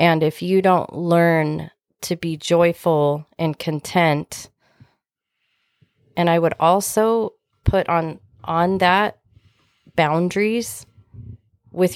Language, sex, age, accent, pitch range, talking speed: English, female, 30-49, American, 155-185 Hz, 100 wpm